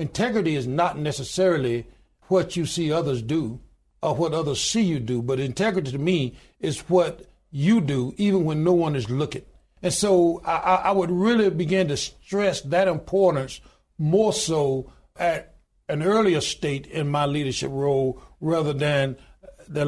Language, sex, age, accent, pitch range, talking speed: English, male, 60-79, American, 145-185 Hz, 160 wpm